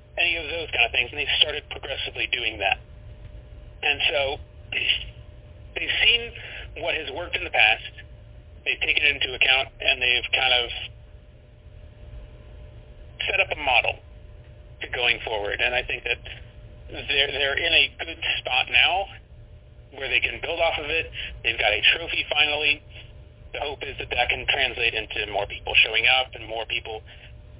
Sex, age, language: male, 40-59, English